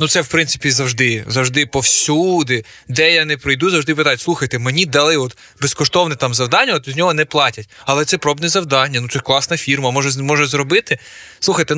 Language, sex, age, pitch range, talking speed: Ukrainian, male, 20-39, 130-165 Hz, 185 wpm